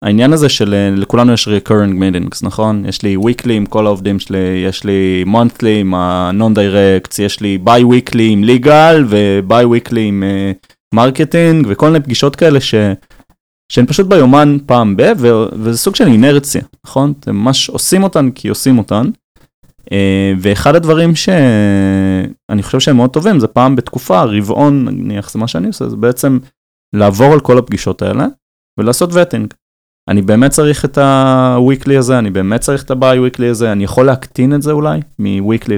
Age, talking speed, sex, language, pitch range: 20-39, 165 wpm, male, Hebrew, 100-135 Hz